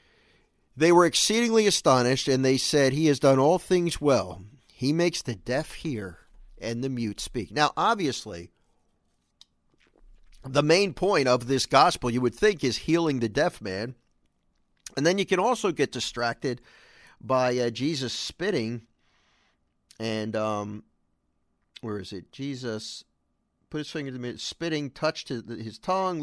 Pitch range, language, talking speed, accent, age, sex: 110-160 Hz, English, 145 wpm, American, 50-69, male